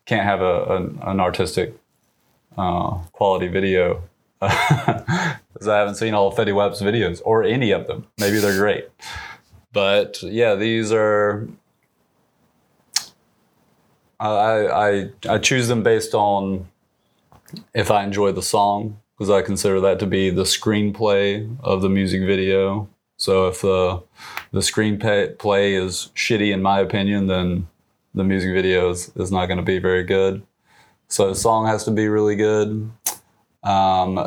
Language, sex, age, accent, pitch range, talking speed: English, male, 20-39, American, 95-105 Hz, 140 wpm